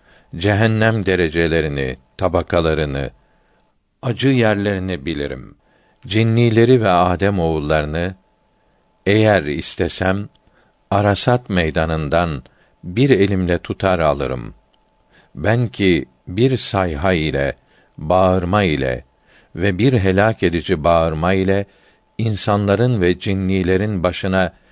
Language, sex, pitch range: Turkish, male, 85-105 Hz